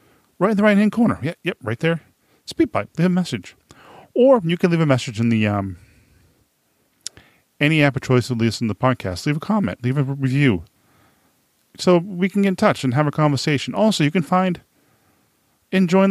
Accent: American